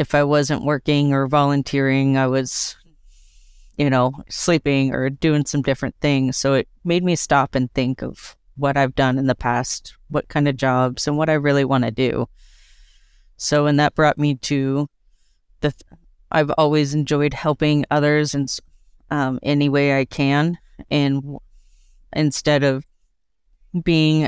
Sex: female